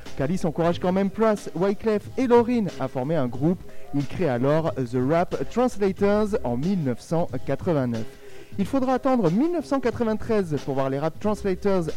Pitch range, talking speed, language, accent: 130-215 Hz, 145 wpm, French, French